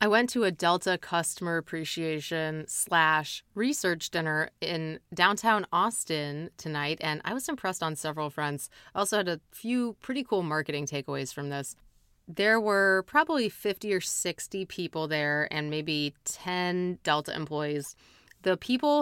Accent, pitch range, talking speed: American, 155-190 Hz, 150 wpm